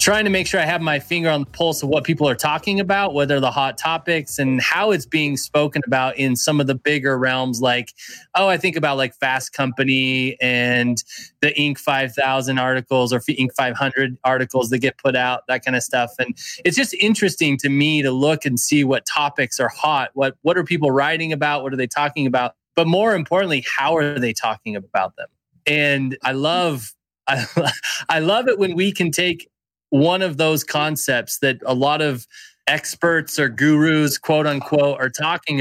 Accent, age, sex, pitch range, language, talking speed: American, 20-39, male, 130-160 Hz, English, 200 wpm